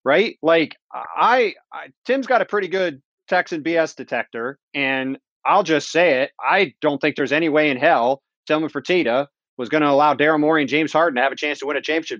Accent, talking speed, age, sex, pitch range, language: American, 220 wpm, 30-49, male, 135-185 Hz, English